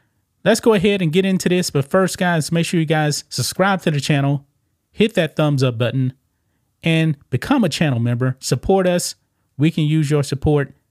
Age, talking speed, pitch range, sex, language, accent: 30-49, 195 wpm, 120-165 Hz, male, English, American